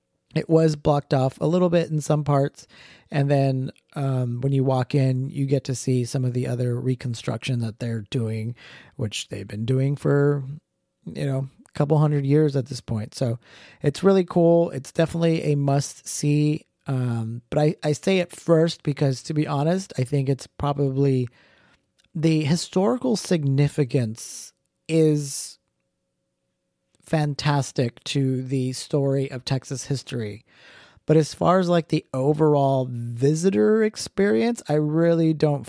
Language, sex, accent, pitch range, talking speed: English, male, American, 130-155 Hz, 150 wpm